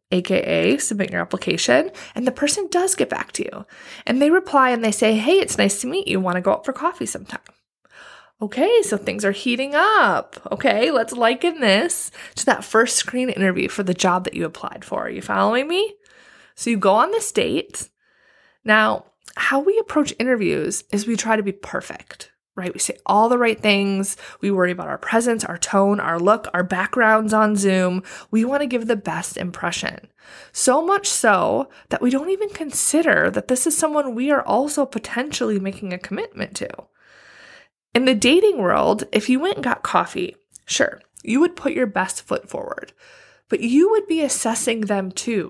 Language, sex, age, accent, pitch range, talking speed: English, female, 20-39, American, 205-300 Hz, 190 wpm